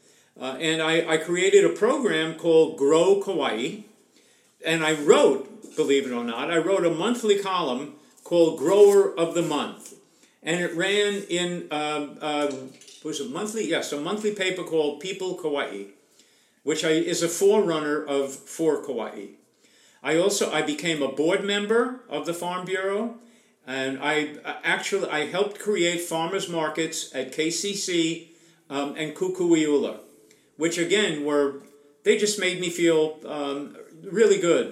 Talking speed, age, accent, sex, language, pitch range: 150 wpm, 50-69, American, male, English, 150-185 Hz